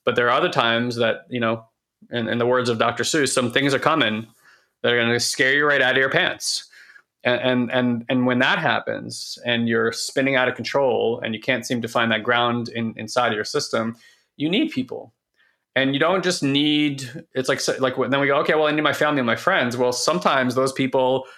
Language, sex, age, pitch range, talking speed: English, male, 20-39, 115-130 Hz, 230 wpm